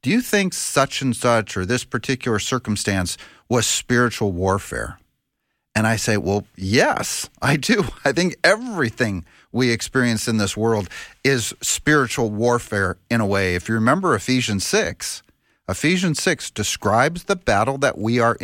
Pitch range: 105-135 Hz